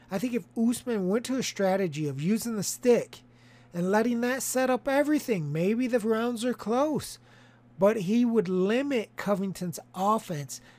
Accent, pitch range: American, 175-230 Hz